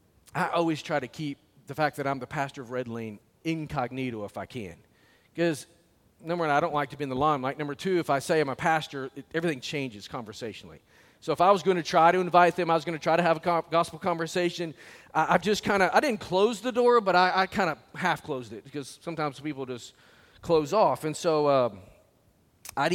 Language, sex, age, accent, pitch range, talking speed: English, male, 40-59, American, 135-180 Hz, 230 wpm